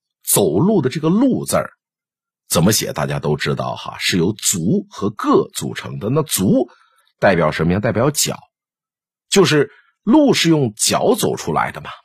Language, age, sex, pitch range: Chinese, 50-69, male, 130-205 Hz